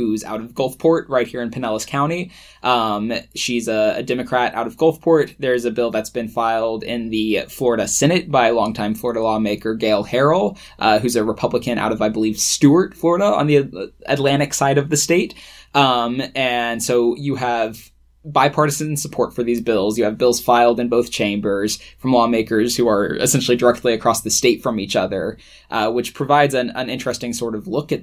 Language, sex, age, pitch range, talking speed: English, male, 20-39, 115-140 Hz, 190 wpm